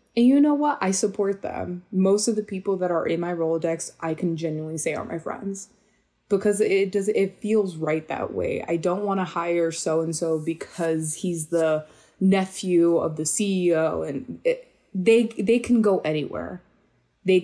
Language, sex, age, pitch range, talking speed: English, female, 20-39, 155-190 Hz, 185 wpm